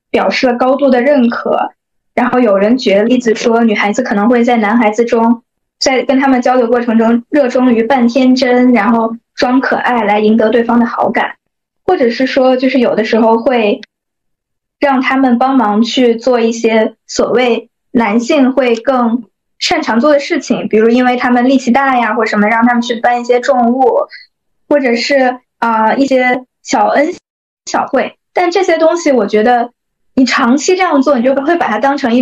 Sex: female